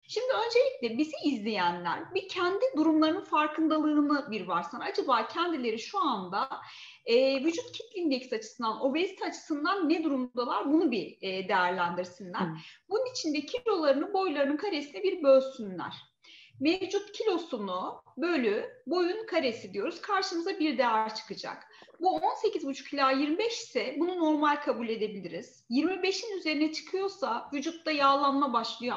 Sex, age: female, 30-49